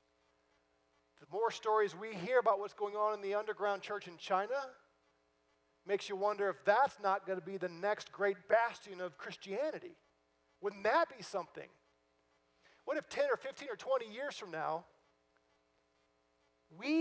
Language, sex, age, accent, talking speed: English, male, 40-59, American, 160 wpm